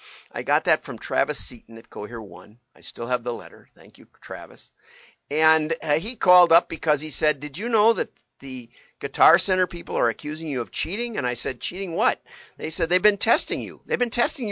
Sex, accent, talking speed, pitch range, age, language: male, American, 215 wpm, 125-185 Hz, 50-69, English